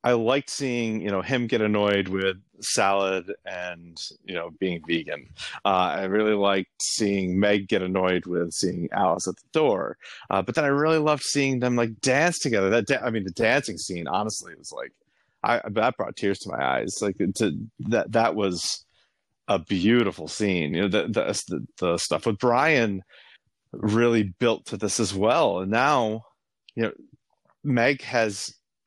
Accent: American